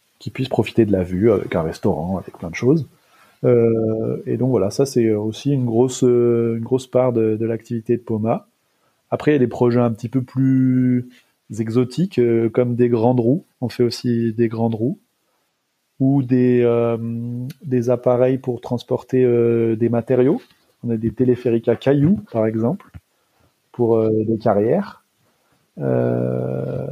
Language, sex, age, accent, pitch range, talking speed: French, male, 30-49, French, 110-125 Hz, 160 wpm